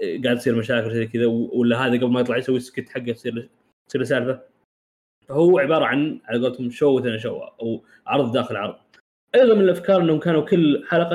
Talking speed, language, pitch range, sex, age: 190 wpm, Arabic, 110-155 Hz, male, 20-39